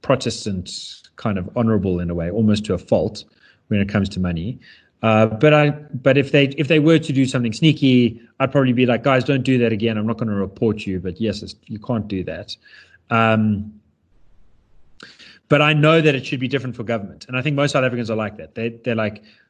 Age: 30-49